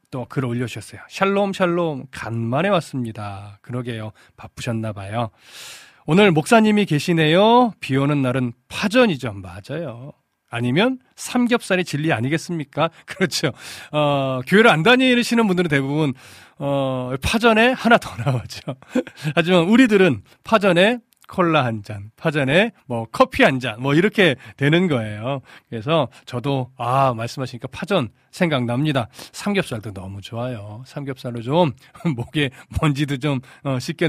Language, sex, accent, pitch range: Korean, male, native, 125-180 Hz